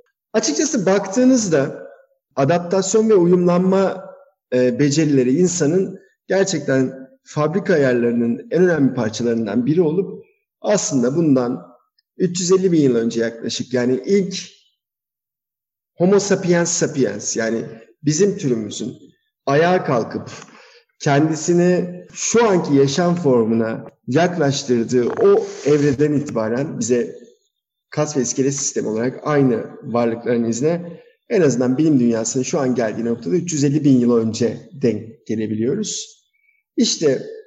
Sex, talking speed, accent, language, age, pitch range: male, 100 wpm, native, Turkish, 50-69, 125-185 Hz